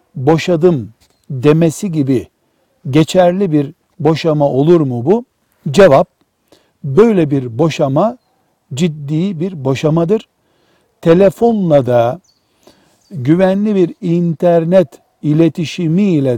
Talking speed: 80 wpm